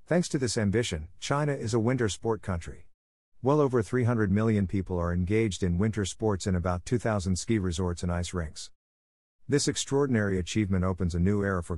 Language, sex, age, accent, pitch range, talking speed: English, male, 50-69, American, 85-115 Hz, 185 wpm